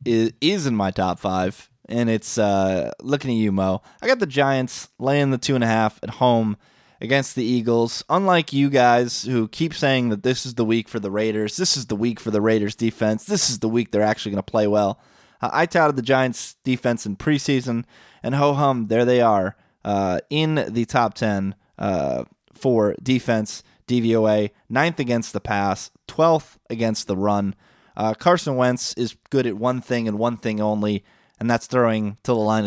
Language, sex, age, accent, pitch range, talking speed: English, male, 20-39, American, 105-135 Hz, 185 wpm